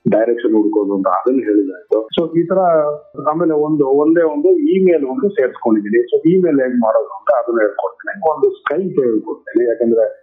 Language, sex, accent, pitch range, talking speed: Kannada, male, native, 125-210 Hz, 155 wpm